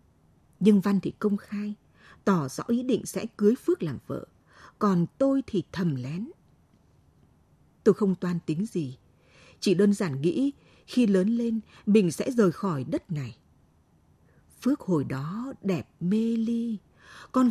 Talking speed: 150 wpm